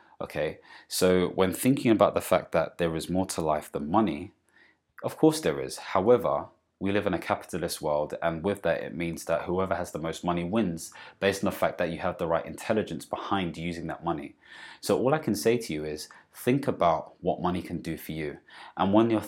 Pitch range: 80-95 Hz